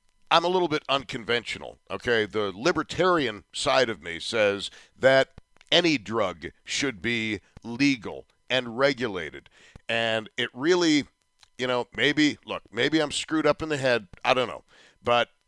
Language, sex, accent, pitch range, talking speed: English, male, American, 115-150 Hz, 145 wpm